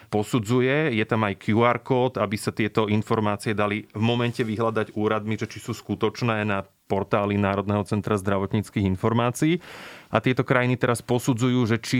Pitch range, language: 100-120 Hz, Slovak